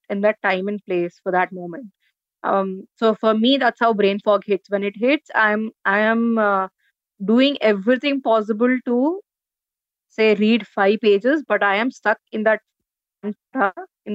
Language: English